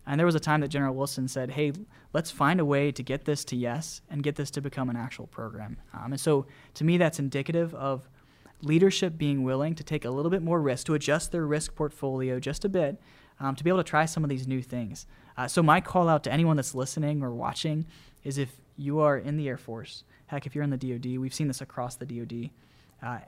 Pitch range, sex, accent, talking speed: 130-155 Hz, male, American, 245 wpm